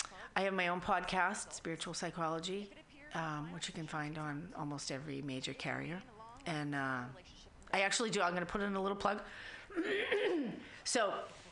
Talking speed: 160 wpm